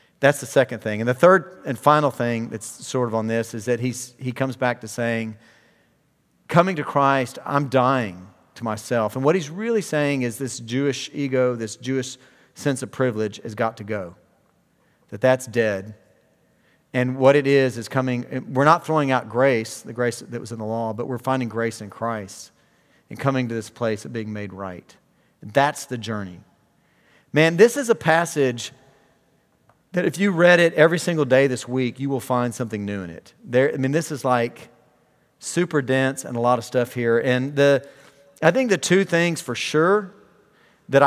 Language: English